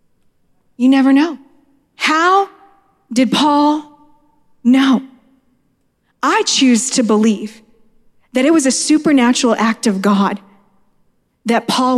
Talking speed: 105 wpm